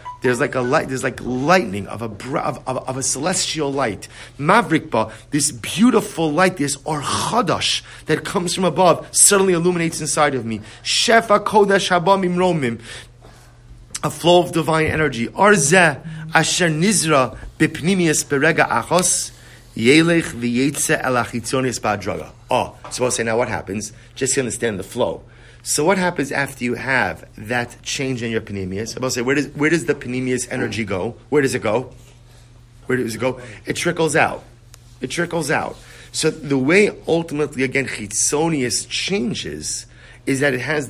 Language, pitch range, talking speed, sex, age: English, 120-160 Hz, 150 wpm, male, 30-49